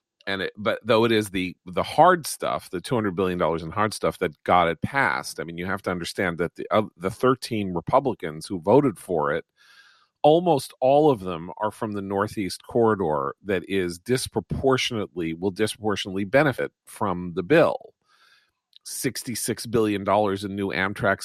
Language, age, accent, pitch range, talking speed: English, 40-59, American, 95-115 Hz, 180 wpm